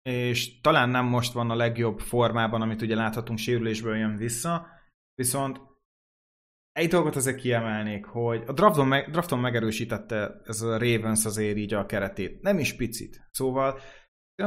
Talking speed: 155 wpm